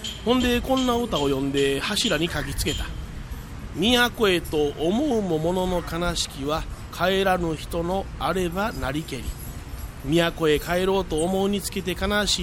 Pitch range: 150-195 Hz